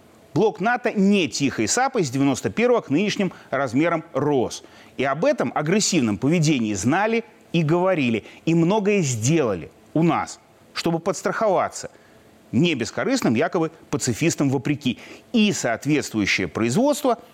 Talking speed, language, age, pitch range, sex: 120 wpm, Russian, 30-49, 130-210 Hz, male